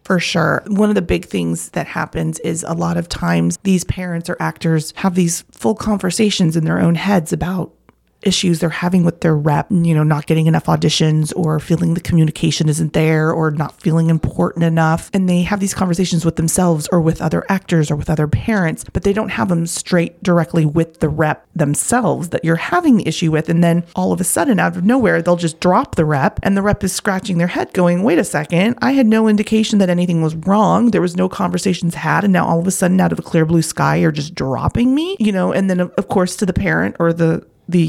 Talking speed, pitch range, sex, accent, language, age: 235 wpm, 160-190 Hz, female, American, English, 30-49